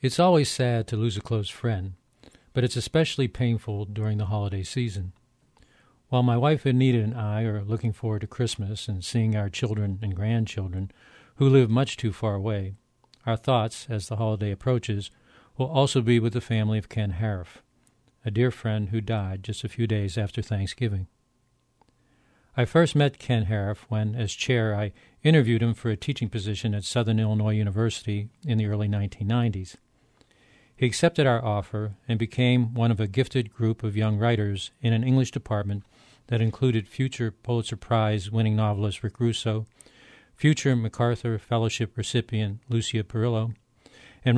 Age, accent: 50-69, American